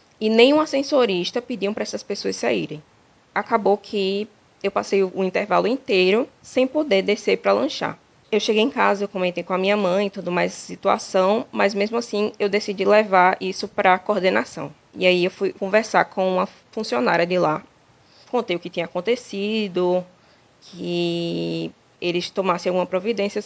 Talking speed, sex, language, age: 170 wpm, female, Portuguese, 20-39